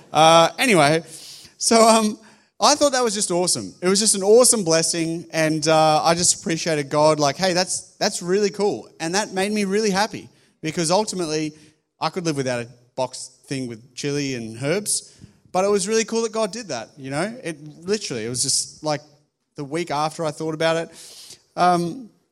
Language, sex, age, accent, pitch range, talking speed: English, male, 30-49, Australian, 145-190 Hz, 195 wpm